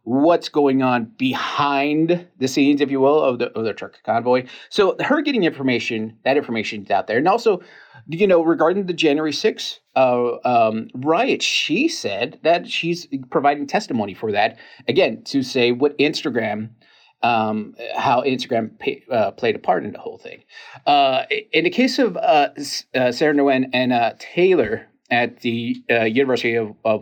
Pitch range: 115-165 Hz